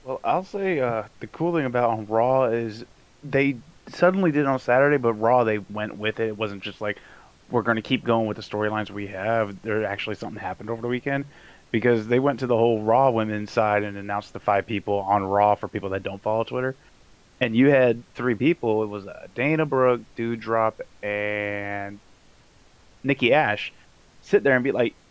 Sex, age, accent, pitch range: male, 20-39, American, 105-135 Hz